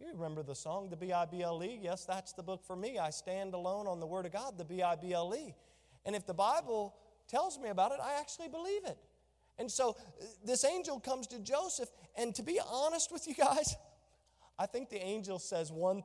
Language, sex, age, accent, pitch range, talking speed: English, male, 40-59, American, 160-210 Hz, 200 wpm